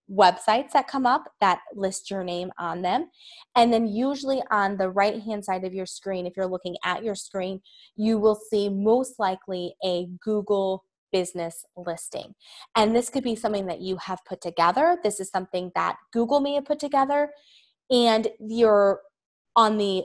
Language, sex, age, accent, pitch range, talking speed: English, female, 20-39, American, 185-230 Hz, 175 wpm